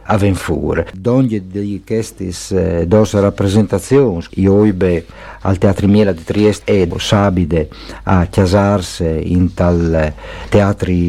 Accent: native